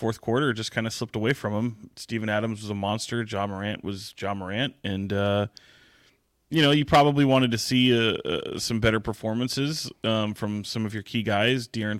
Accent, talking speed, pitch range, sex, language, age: American, 215 wpm, 100-120 Hz, male, English, 30-49